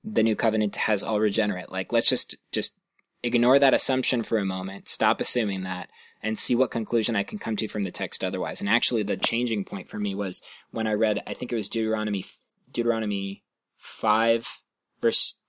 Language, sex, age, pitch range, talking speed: English, male, 20-39, 110-130 Hz, 195 wpm